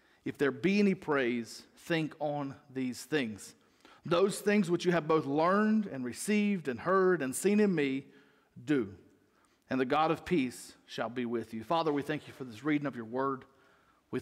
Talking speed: 190 wpm